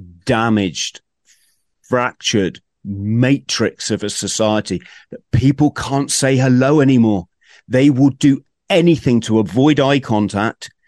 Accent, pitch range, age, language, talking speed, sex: British, 110-140 Hz, 40-59, English, 110 wpm, male